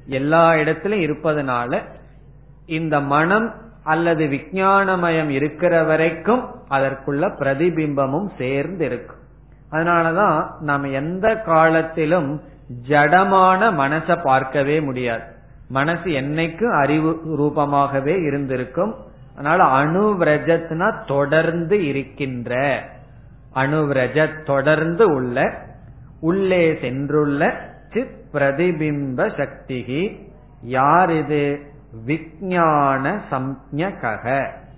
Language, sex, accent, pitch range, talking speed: Tamil, male, native, 140-170 Hz, 65 wpm